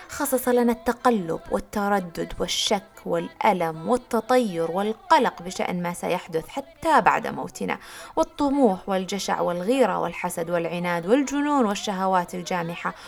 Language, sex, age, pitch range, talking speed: Arabic, female, 20-39, 185-285 Hz, 100 wpm